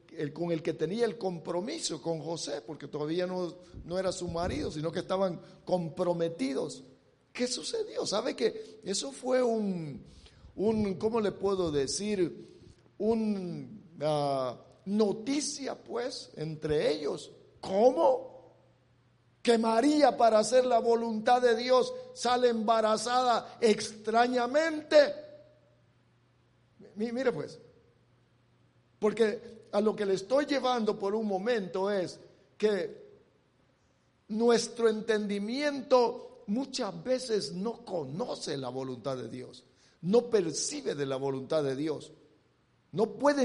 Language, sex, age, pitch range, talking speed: English, male, 50-69, 165-245 Hz, 115 wpm